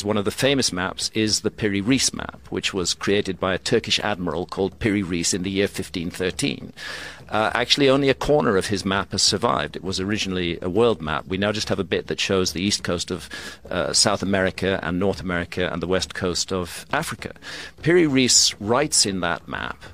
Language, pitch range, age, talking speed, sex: English, 95-115 Hz, 50-69, 210 wpm, male